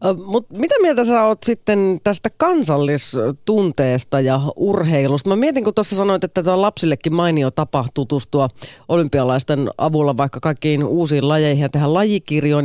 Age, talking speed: 30-49, 140 wpm